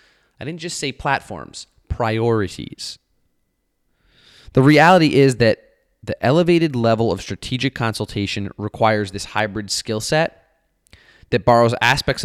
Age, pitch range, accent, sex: 20-39, 100-135 Hz, American, male